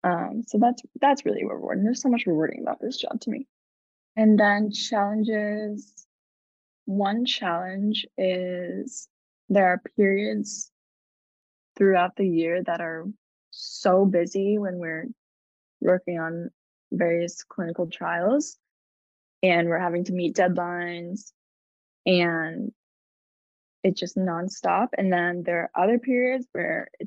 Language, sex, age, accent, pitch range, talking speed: English, female, 10-29, American, 175-220 Hz, 120 wpm